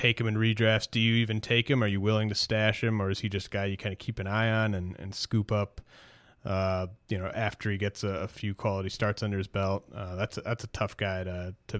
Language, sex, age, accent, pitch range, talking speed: English, male, 30-49, American, 100-115 Hz, 280 wpm